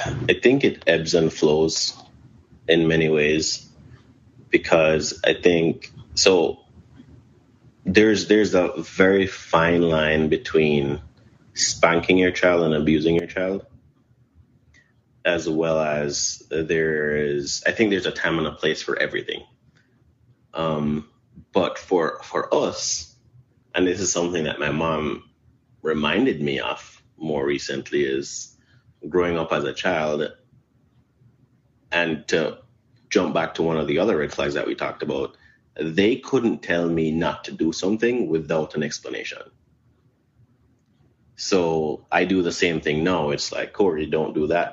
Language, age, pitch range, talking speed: English, 30-49, 80-115 Hz, 140 wpm